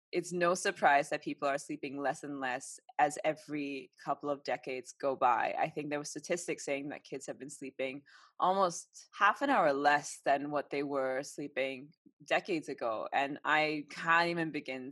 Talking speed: 180 wpm